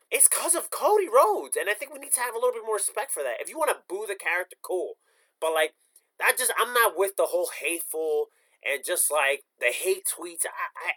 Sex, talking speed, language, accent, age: male, 240 wpm, English, American, 20-39